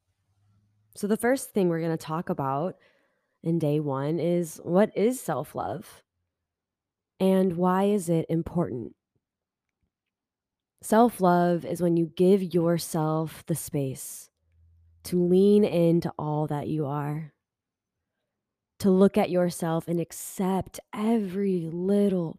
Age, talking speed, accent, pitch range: 20-39, 115 wpm, American, 150-185 Hz